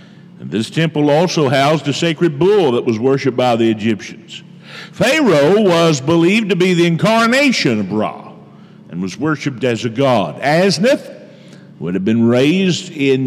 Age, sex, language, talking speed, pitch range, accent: 50-69, male, English, 160 wpm, 135-205 Hz, American